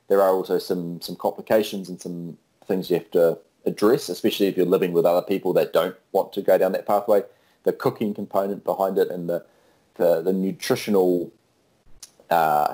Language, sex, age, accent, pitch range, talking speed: English, male, 30-49, Australian, 85-100 Hz, 185 wpm